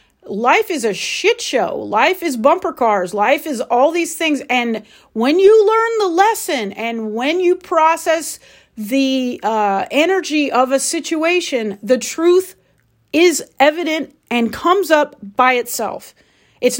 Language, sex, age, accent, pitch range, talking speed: English, female, 40-59, American, 250-330 Hz, 145 wpm